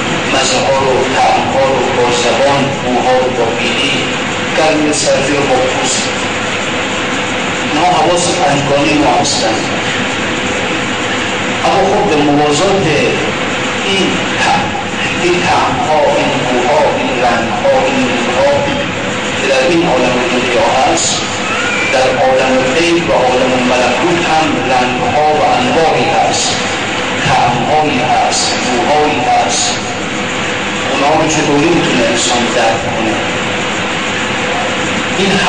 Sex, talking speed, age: male, 50 wpm, 50-69